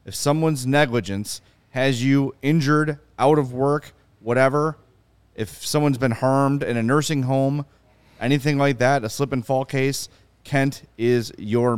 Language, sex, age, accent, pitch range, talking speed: English, male, 30-49, American, 105-135 Hz, 150 wpm